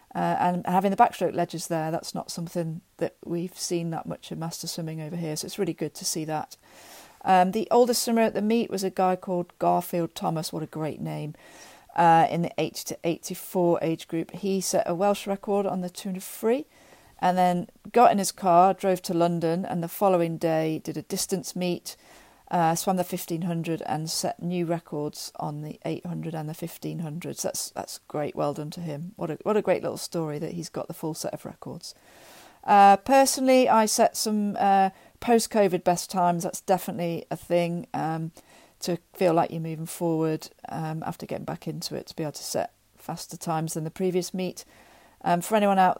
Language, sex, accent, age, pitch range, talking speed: English, female, British, 40-59, 165-190 Hz, 200 wpm